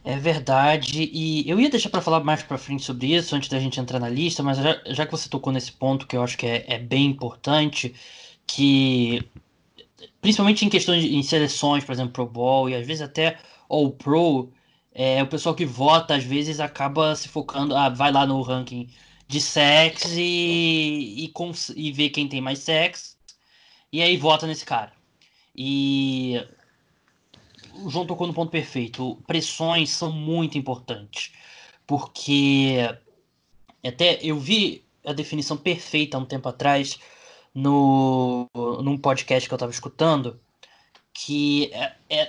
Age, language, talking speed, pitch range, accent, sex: 20-39, Portuguese, 160 wpm, 130-160 Hz, Brazilian, male